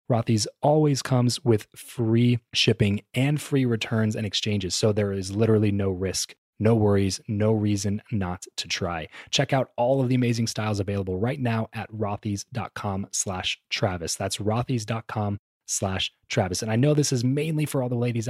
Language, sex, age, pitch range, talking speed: English, male, 20-39, 100-120 Hz, 170 wpm